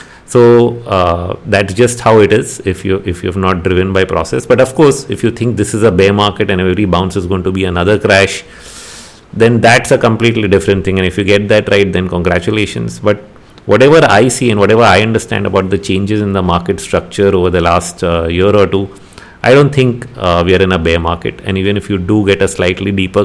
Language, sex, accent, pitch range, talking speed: English, male, Indian, 95-115 Hz, 235 wpm